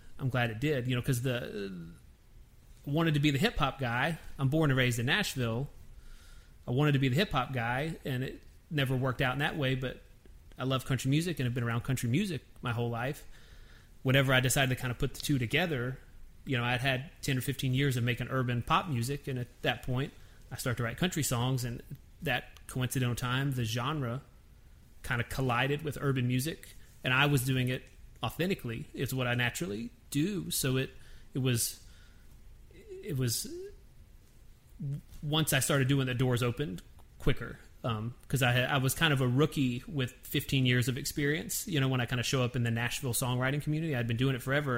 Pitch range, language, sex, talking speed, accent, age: 120-140 Hz, English, male, 200 wpm, American, 30-49